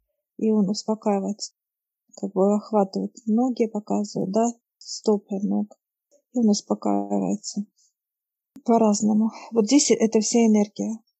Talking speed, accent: 105 wpm, native